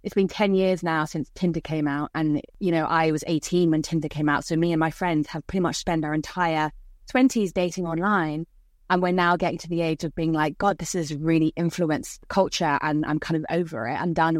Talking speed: 240 wpm